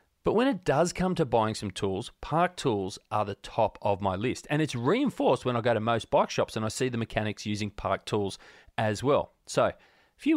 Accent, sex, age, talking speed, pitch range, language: Australian, male, 30-49, 230 wpm, 105-130 Hz, English